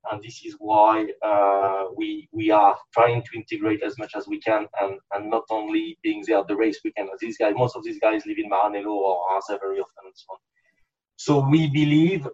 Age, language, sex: 30-49, English, male